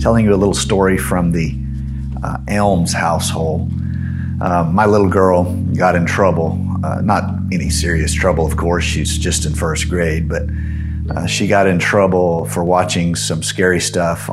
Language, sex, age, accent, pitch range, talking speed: English, male, 40-59, American, 85-105 Hz, 170 wpm